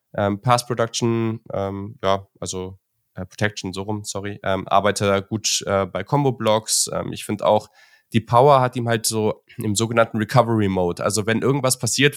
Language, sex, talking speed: German, male, 165 wpm